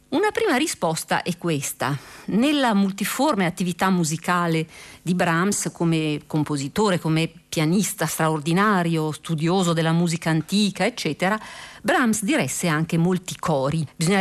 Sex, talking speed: female, 115 wpm